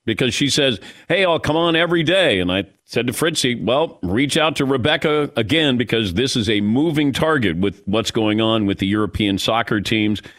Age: 50-69